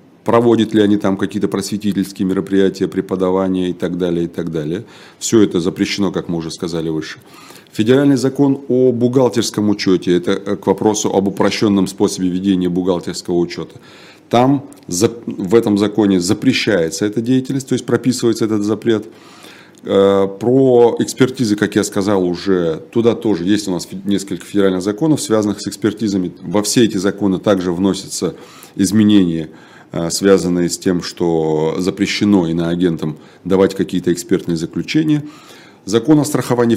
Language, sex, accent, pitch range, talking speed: Russian, male, native, 95-115 Hz, 140 wpm